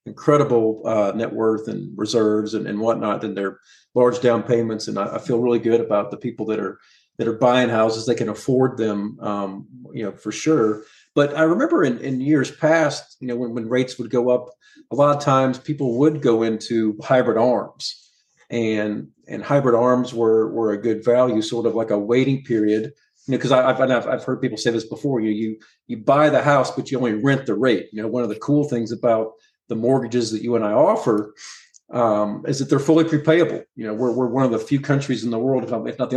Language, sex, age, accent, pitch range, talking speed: English, male, 40-59, American, 110-140 Hz, 225 wpm